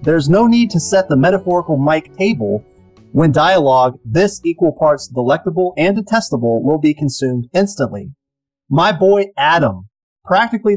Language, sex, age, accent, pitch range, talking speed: English, male, 30-49, American, 125-175 Hz, 140 wpm